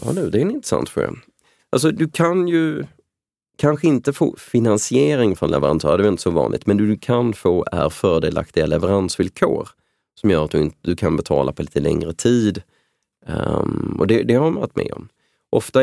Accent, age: native, 30-49